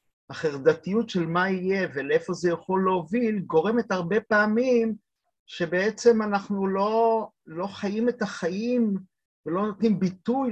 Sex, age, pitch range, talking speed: male, 50-69, 165-230 Hz, 120 wpm